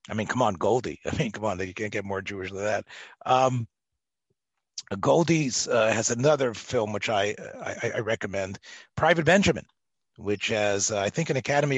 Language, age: English, 40-59